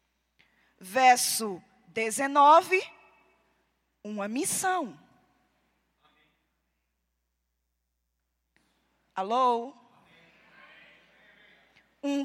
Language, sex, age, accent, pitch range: Portuguese, female, 20-39, Brazilian, 205-325 Hz